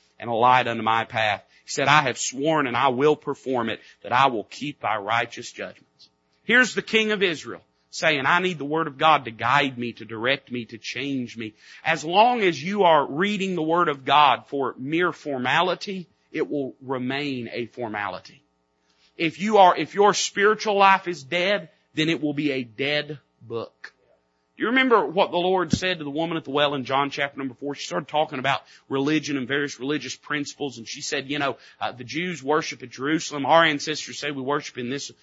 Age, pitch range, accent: 40-59, 125-175 Hz, American